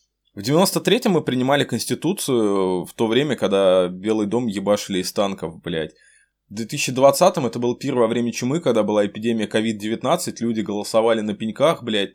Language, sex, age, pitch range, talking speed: Ukrainian, male, 20-39, 100-125 Hz, 155 wpm